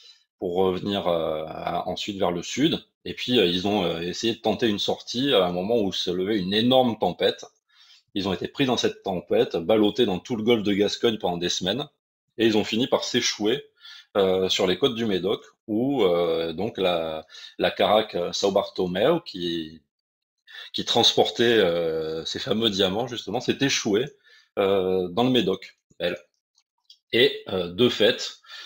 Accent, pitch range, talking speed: French, 90-135 Hz, 175 wpm